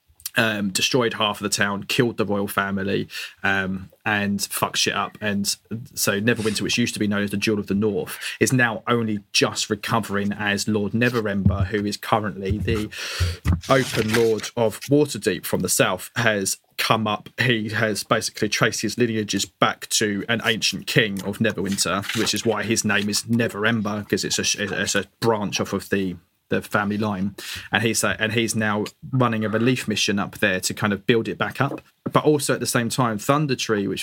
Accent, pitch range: British, 100-115 Hz